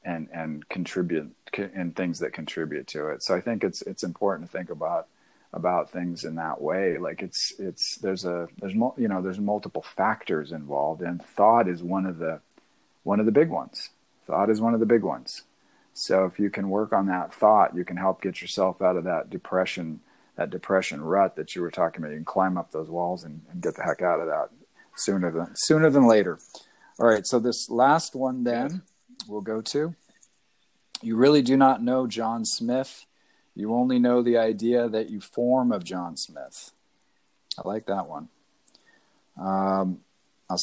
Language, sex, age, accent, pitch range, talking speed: English, male, 40-59, American, 95-125 Hz, 195 wpm